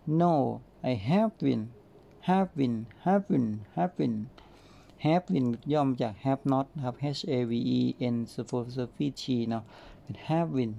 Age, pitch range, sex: 60-79, 120-150 Hz, male